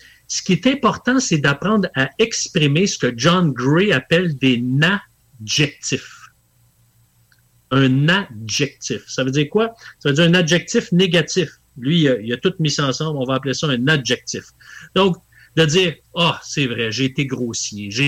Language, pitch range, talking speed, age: English, 120-165 Hz, 175 wpm, 50-69